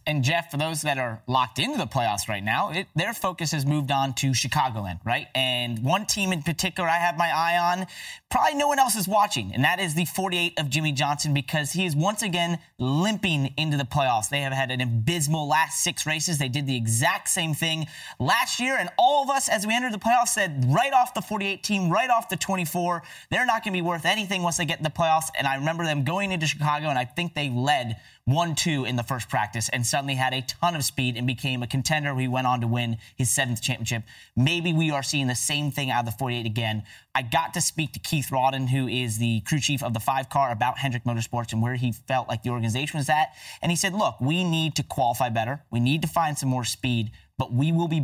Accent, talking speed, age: American, 245 wpm, 30-49